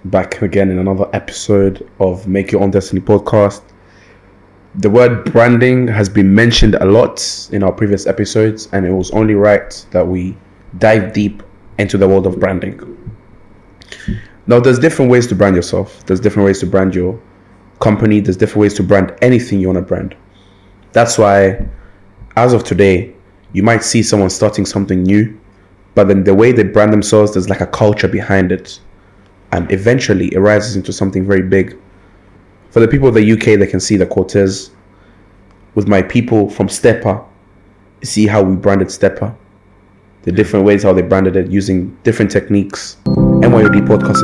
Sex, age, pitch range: male, 20-39, 95-105 Hz